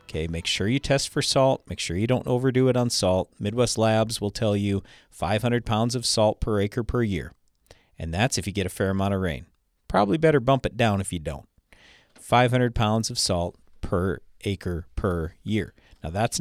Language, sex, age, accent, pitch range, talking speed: English, male, 40-59, American, 95-125 Hz, 205 wpm